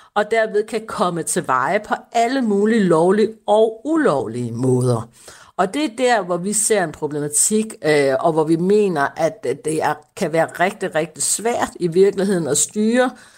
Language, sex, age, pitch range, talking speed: Danish, female, 60-79, 170-215 Hz, 165 wpm